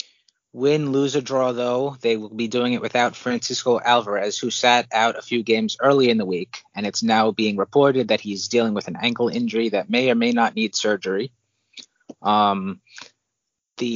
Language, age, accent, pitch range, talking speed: English, 30-49, American, 110-135 Hz, 190 wpm